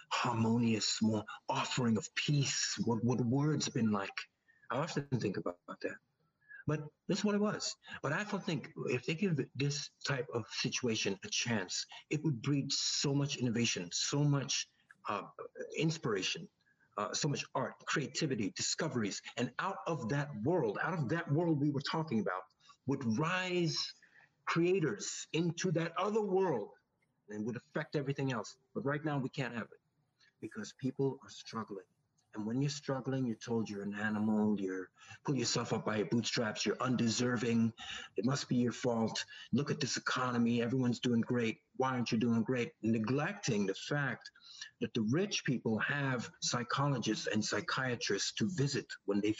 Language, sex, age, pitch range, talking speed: English, male, 50-69, 115-150 Hz, 165 wpm